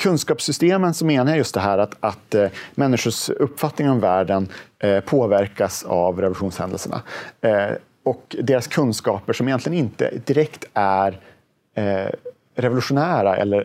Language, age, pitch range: Swedish, 40-59, 95-130 Hz